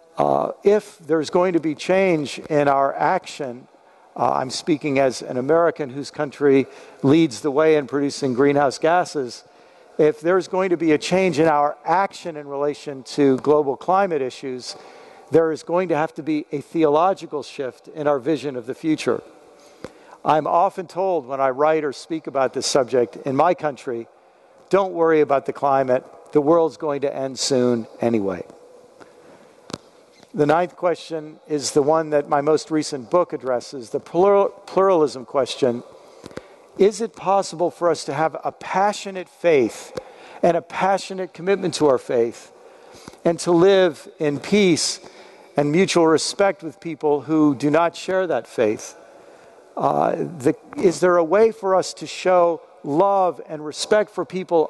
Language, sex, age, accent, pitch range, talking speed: English, male, 50-69, American, 145-185 Hz, 160 wpm